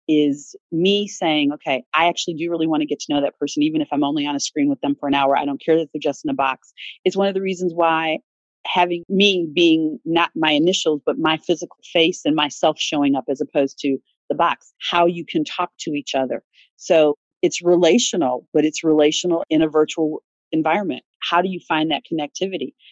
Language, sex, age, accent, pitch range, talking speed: English, female, 40-59, American, 155-190 Hz, 215 wpm